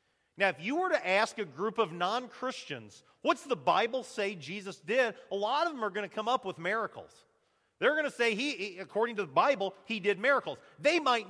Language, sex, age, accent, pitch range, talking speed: English, male, 40-59, American, 185-265 Hz, 220 wpm